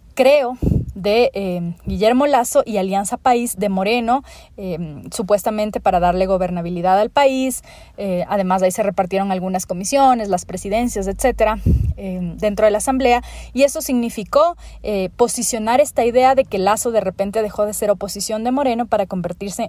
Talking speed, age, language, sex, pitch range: 160 wpm, 30-49, Spanish, female, 195-240 Hz